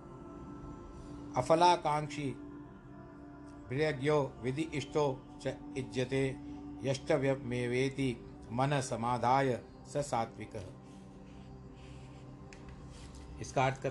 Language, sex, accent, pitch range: Hindi, male, native, 120-145 Hz